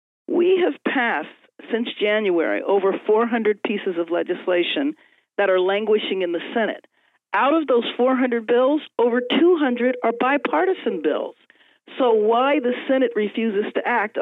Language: English